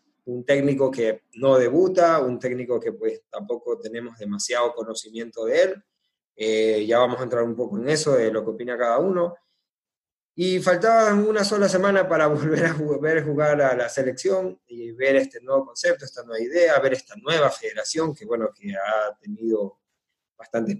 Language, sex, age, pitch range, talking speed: Spanish, male, 20-39, 115-170 Hz, 175 wpm